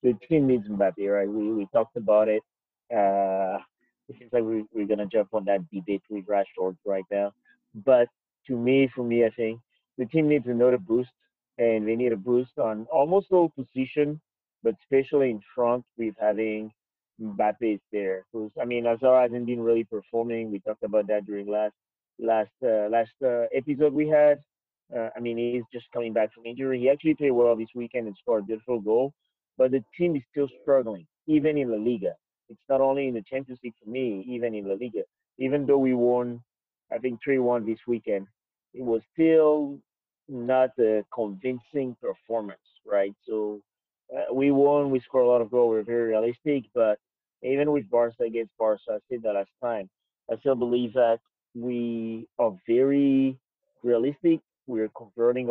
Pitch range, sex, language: 110-130 Hz, male, English